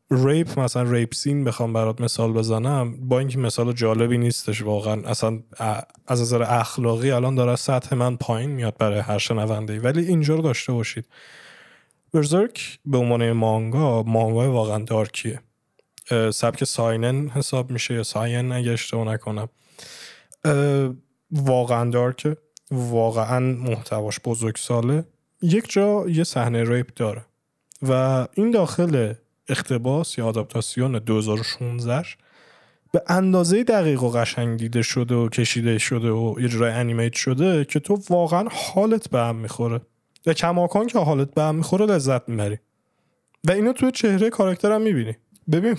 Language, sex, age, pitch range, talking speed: Persian, male, 20-39, 115-150 Hz, 135 wpm